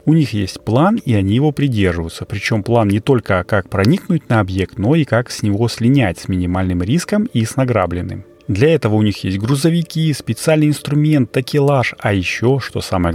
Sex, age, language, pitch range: male, 30-49, Russian, 100-135 Hz